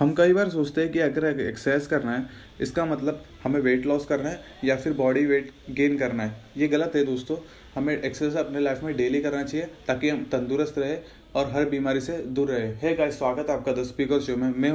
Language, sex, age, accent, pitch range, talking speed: Hindi, male, 20-39, native, 130-155 Hz, 225 wpm